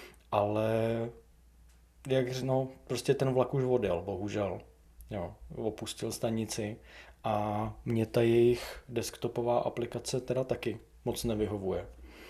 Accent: native